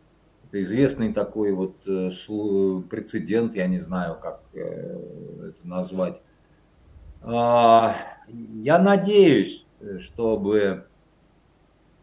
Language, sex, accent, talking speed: Russian, male, native, 65 wpm